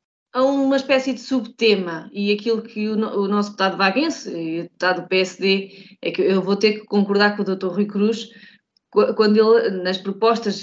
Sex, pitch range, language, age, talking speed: female, 205-255 Hz, Portuguese, 20-39, 185 wpm